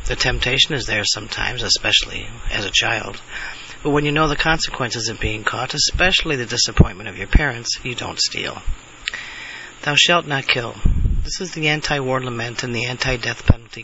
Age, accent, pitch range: 40-59, American, 115-145 Hz